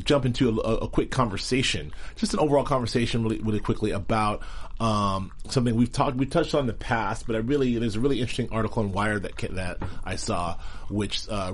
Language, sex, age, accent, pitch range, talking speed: English, male, 30-49, American, 100-120 Hz, 215 wpm